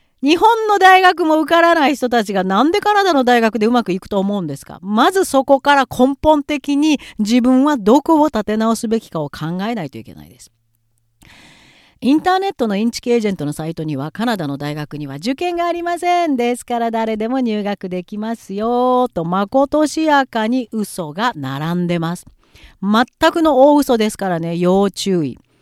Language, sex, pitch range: Japanese, female, 175-275 Hz